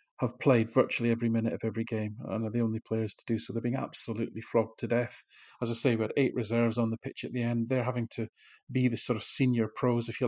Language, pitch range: English, 115-130 Hz